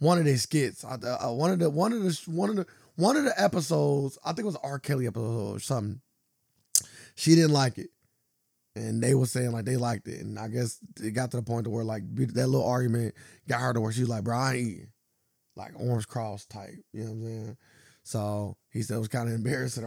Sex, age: male, 20-39